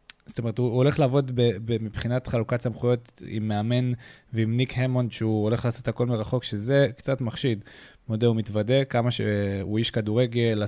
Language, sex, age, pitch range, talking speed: Hebrew, male, 20-39, 110-135 Hz, 170 wpm